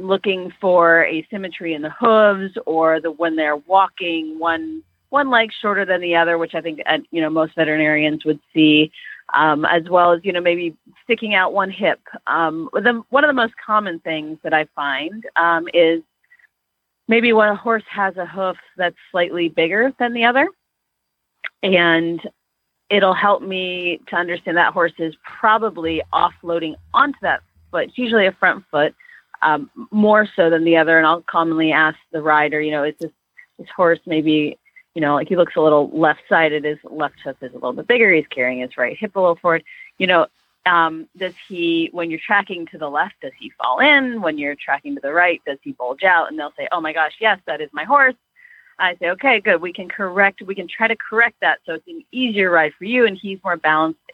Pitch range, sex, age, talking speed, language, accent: 155-205 Hz, female, 30-49, 205 wpm, English, American